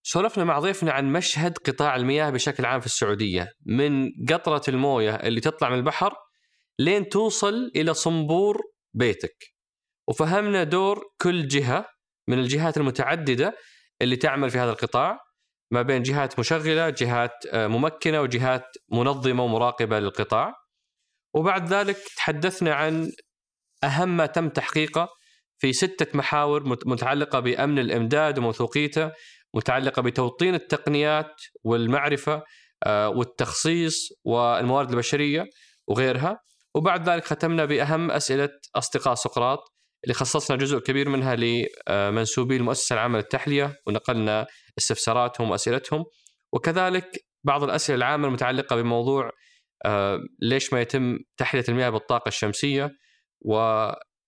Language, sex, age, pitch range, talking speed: Arabic, male, 20-39, 120-160 Hz, 110 wpm